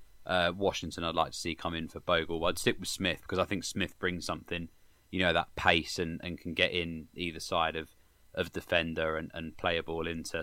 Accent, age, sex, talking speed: British, 20-39, male, 235 wpm